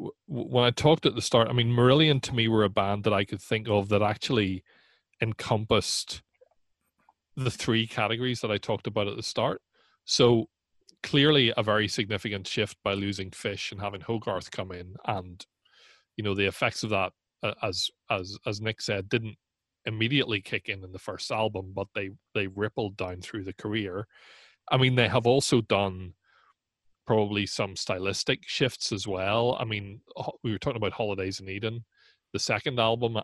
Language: English